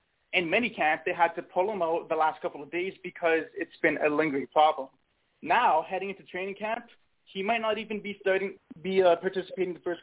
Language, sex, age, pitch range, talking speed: English, male, 20-39, 170-215 Hz, 210 wpm